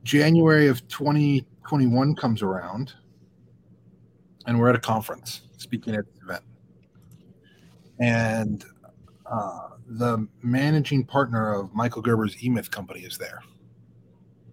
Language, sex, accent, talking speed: English, male, American, 105 wpm